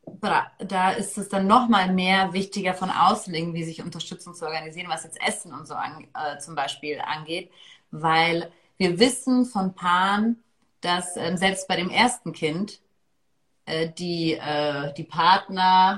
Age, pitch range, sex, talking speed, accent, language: 30-49, 170-210 Hz, female, 160 wpm, German, German